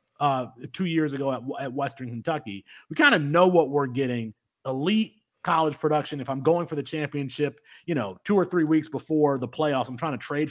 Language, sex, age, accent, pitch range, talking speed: English, male, 30-49, American, 120-155 Hz, 210 wpm